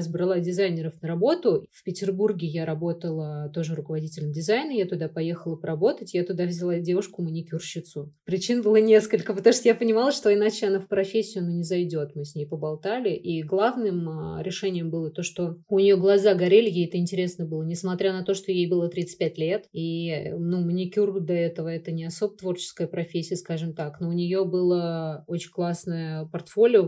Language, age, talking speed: Russian, 20-39, 175 wpm